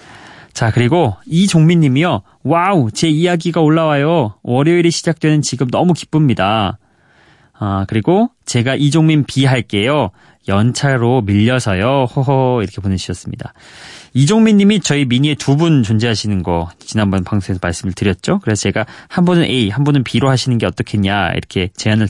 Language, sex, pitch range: Korean, male, 105-150 Hz